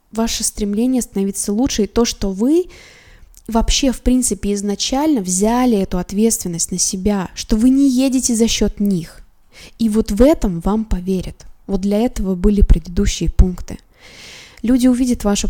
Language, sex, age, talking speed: Russian, female, 20-39, 150 wpm